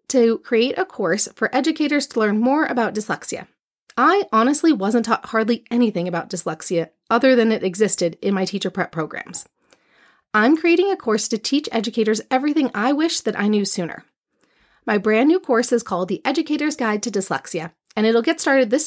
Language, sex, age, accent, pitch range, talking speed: English, female, 30-49, American, 195-275 Hz, 185 wpm